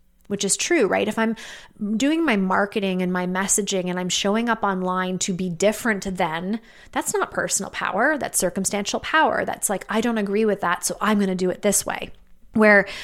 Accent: American